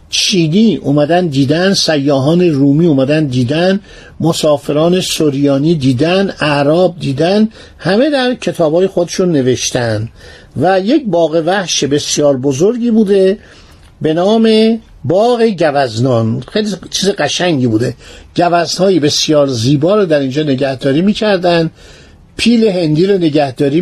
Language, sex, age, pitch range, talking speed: Persian, male, 50-69, 145-210 Hz, 110 wpm